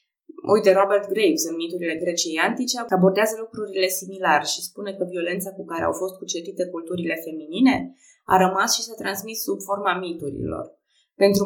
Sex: female